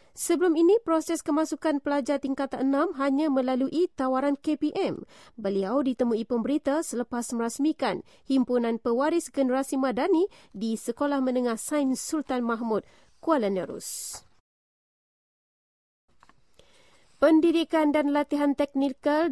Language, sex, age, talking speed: English, female, 30-49, 100 wpm